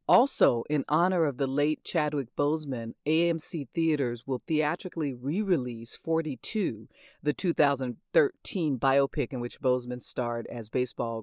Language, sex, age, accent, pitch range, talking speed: English, female, 40-59, American, 120-150 Hz, 125 wpm